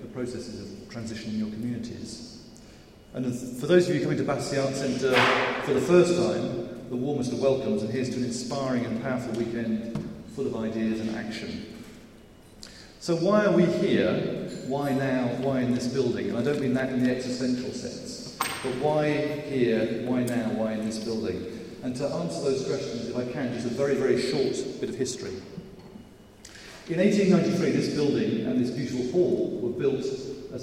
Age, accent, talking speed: 40-59, British, 180 wpm